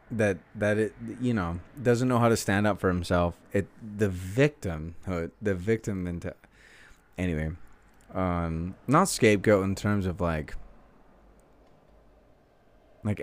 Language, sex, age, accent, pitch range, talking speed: English, male, 30-49, American, 85-105 Hz, 125 wpm